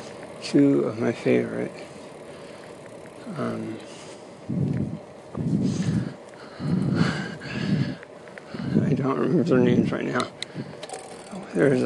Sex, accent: male, American